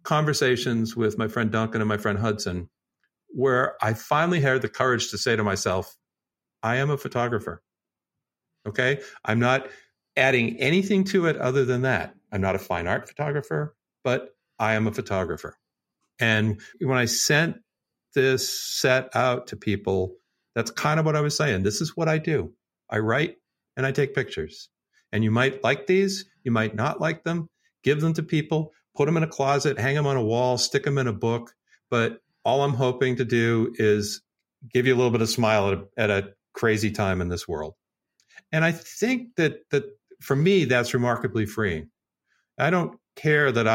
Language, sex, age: English, male, 50-69